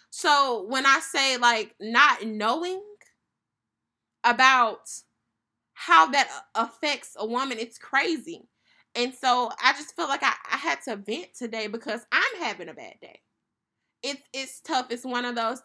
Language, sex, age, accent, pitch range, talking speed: English, female, 20-39, American, 215-270 Hz, 155 wpm